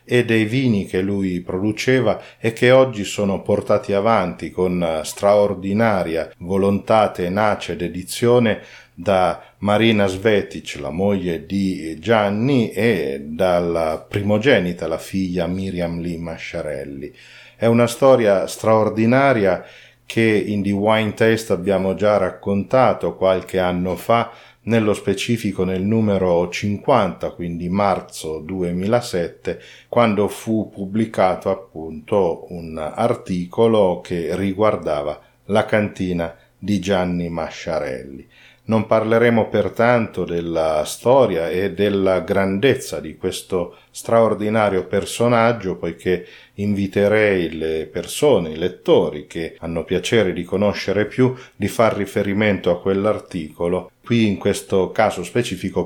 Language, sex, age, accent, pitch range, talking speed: Italian, male, 40-59, native, 90-110 Hz, 110 wpm